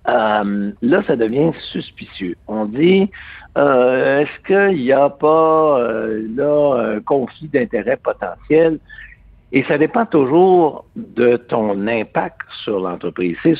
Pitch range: 110-170 Hz